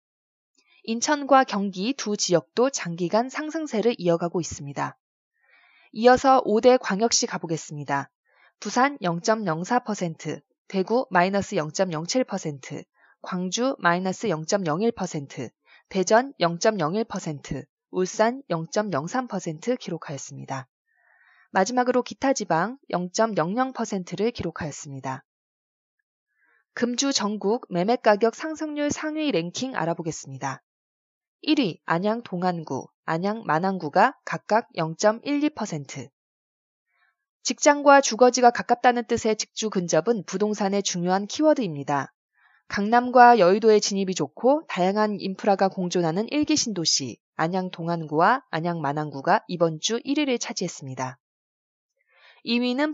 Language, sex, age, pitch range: Korean, female, 20-39, 170-245 Hz